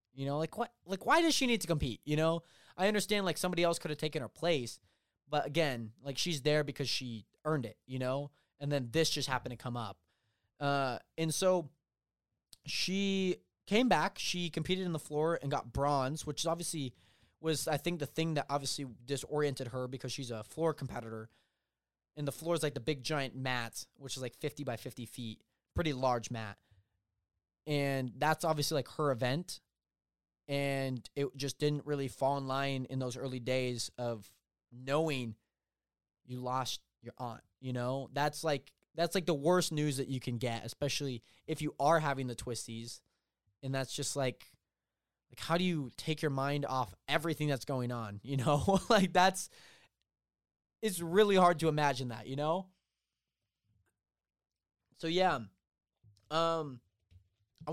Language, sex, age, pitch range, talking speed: English, male, 20-39, 120-160 Hz, 175 wpm